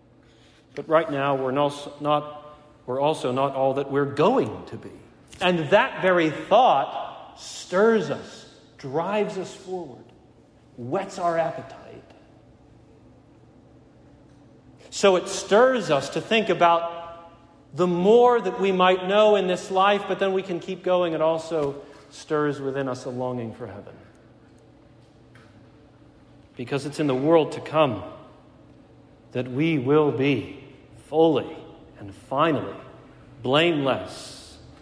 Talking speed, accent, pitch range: 120 wpm, American, 125-165 Hz